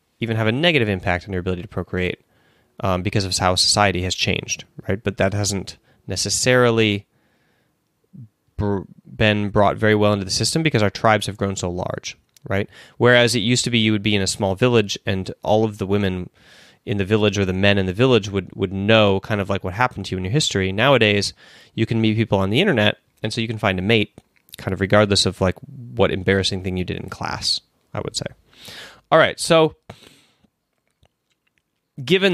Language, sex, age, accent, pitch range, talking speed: English, male, 20-39, American, 100-120 Hz, 205 wpm